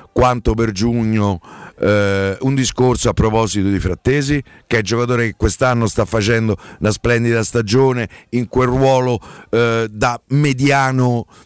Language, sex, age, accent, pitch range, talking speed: Italian, male, 50-69, native, 115-145 Hz, 135 wpm